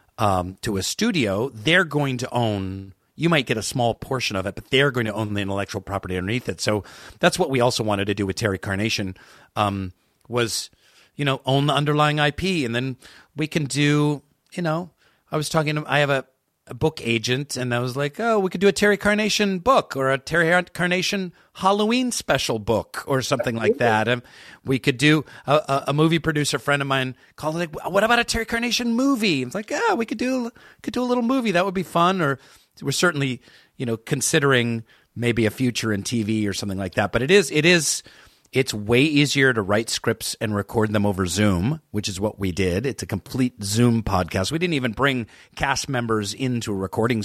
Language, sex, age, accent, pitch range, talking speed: English, male, 40-59, American, 110-155 Hz, 215 wpm